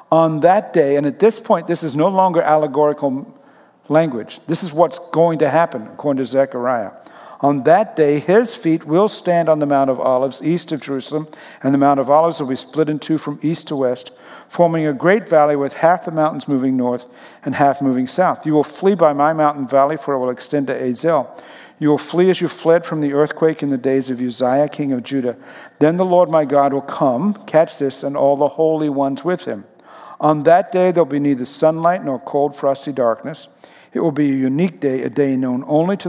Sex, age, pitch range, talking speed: male, 50-69, 140-165 Hz, 220 wpm